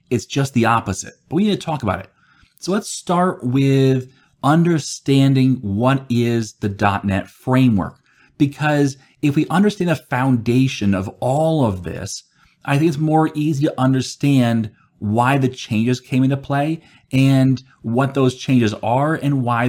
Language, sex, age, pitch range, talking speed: English, male, 30-49, 120-150 Hz, 155 wpm